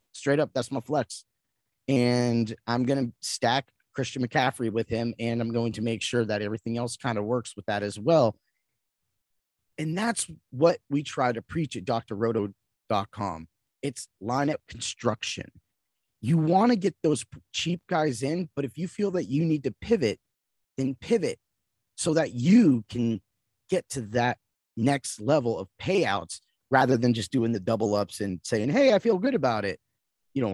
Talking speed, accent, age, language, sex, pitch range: 175 wpm, American, 30-49, English, male, 115-160 Hz